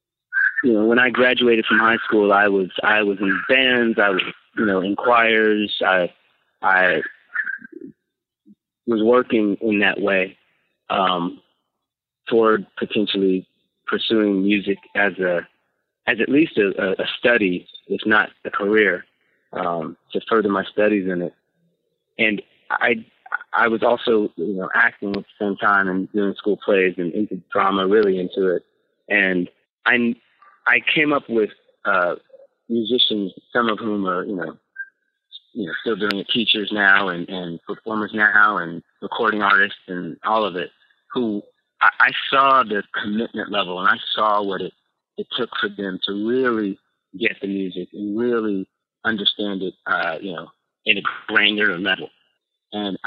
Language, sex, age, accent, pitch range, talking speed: English, male, 30-49, American, 95-115 Hz, 155 wpm